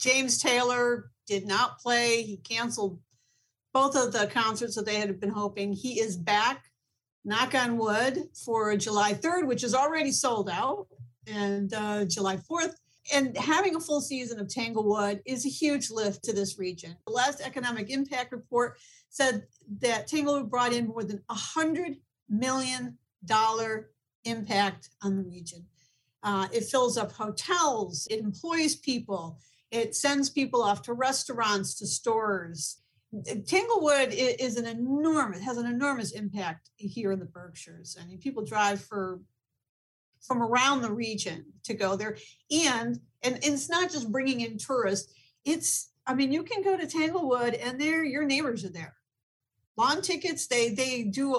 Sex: female